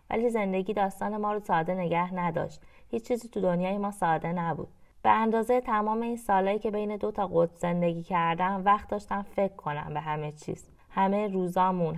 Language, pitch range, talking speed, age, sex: Persian, 170-215 Hz, 180 wpm, 20-39, female